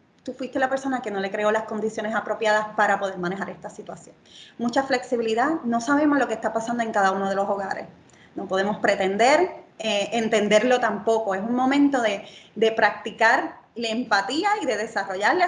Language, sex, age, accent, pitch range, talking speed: English, female, 20-39, American, 210-270 Hz, 180 wpm